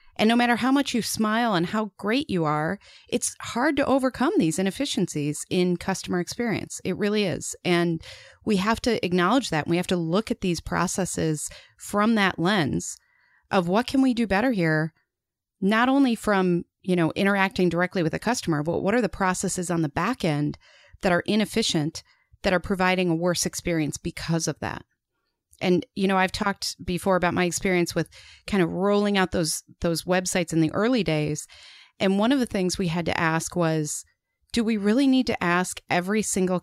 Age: 30-49